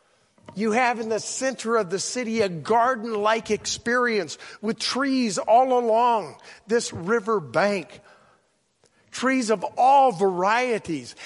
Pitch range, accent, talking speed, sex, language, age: 145-235 Hz, American, 115 wpm, male, English, 50-69